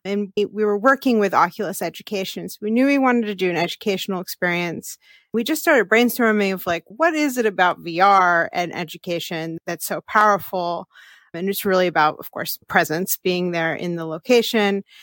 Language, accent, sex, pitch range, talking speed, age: English, American, female, 180-230 Hz, 185 wpm, 30-49